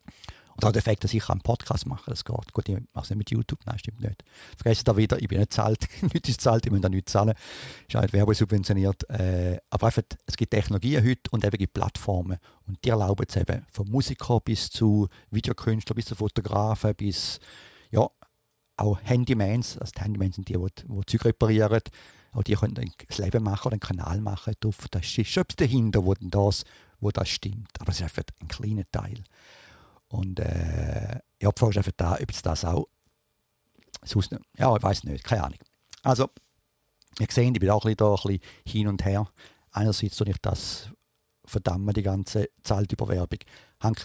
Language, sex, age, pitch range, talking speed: English, male, 50-69, 100-115 Hz, 200 wpm